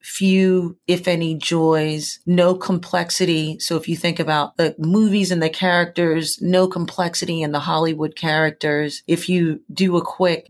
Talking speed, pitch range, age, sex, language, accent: 155 wpm, 155-180 Hz, 40-59, female, English, American